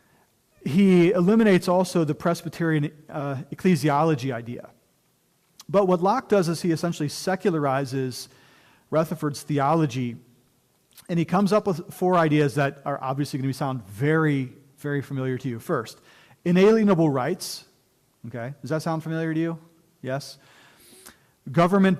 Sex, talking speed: male, 130 wpm